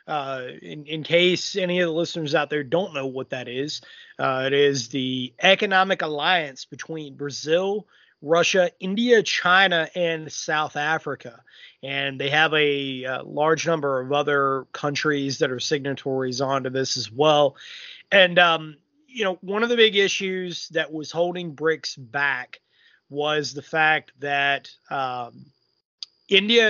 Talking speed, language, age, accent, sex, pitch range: 150 wpm, English, 30-49, American, male, 140-175 Hz